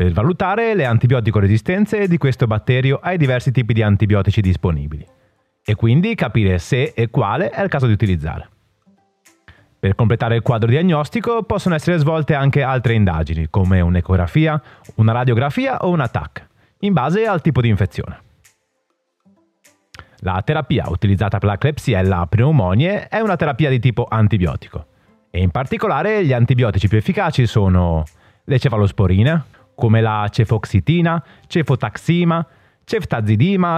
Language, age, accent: Italian, 30-49, native